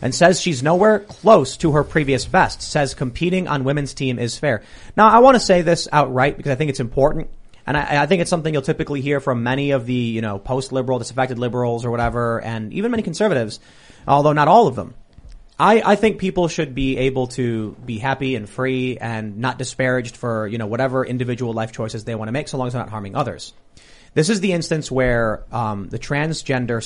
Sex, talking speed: male, 220 wpm